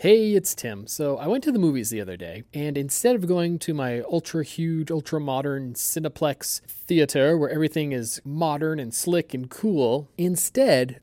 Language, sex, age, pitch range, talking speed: English, male, 30-49, 130-180 Hz, 170 wpm